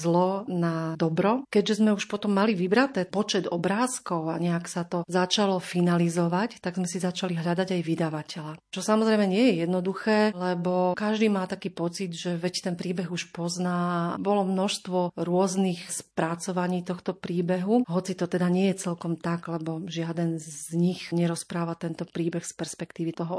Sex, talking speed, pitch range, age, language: female, 160 wpm, 175-195 Hz, 40-59, Slovak